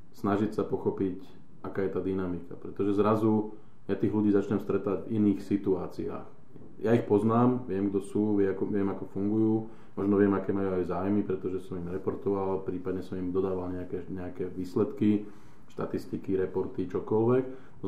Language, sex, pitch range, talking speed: Slovak, male, 95-105 Hz, 165 wpm